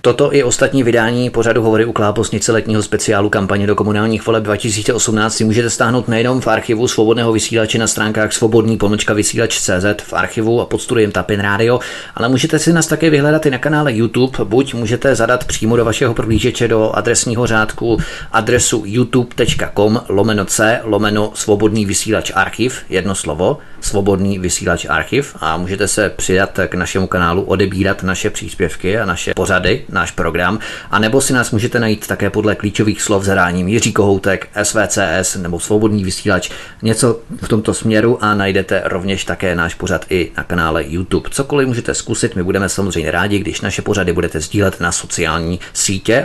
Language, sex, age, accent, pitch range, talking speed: Czech, male, 30-49, native, 100-115 Hz, 160 wpm